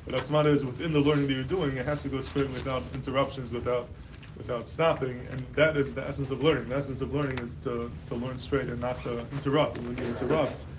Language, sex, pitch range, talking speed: English, male, 120-140 Hz, 240 wpm